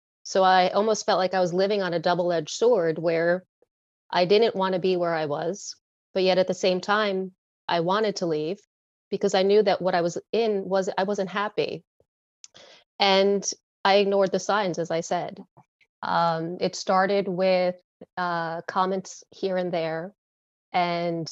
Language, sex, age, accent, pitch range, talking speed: English, female, 30-49, American, 170-190 Hz, 170 wpm